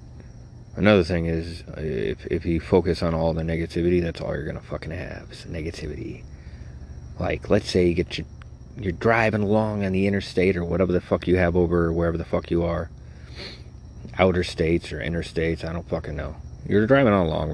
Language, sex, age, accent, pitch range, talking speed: English, male, 30-49, American, 80-95 Hz, 205 wpm